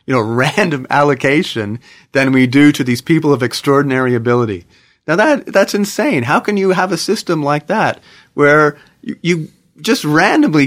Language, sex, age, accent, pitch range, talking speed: English, male, 40-59, American, 115-150 Hz, 165 wpm